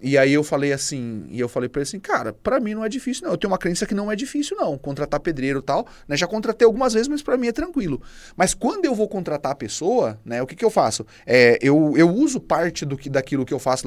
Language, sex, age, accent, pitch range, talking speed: Portuguese, male, 30-49, Brazilian, 125-200 Hz, 265 wpm